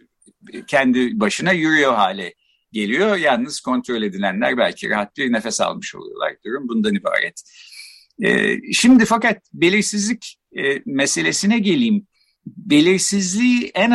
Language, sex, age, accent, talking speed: Turkish, male, 50-69, native, 105 wpm